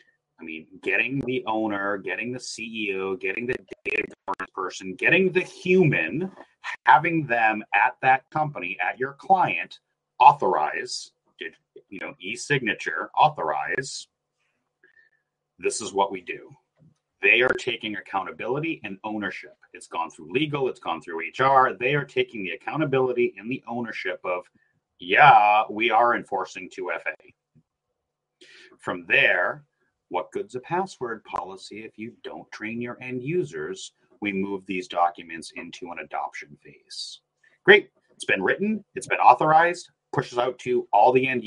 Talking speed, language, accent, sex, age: 145 wpm, English, American, male, 30-49